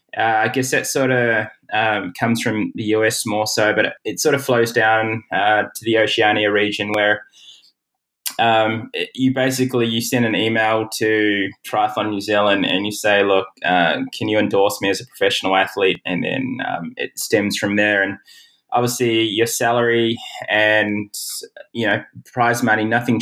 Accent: Australian